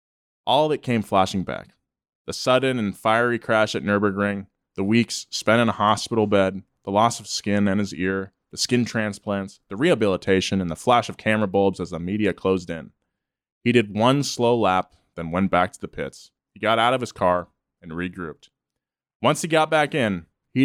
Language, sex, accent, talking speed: English, male, American, 195 wpm